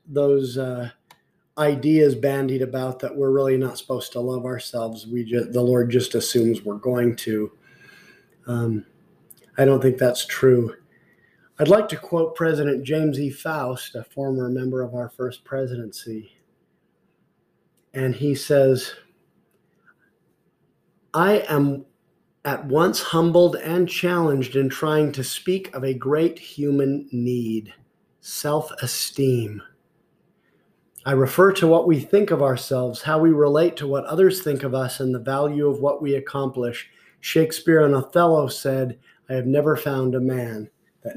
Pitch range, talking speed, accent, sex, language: 130-155 Hz, 145 wpm, American, male, English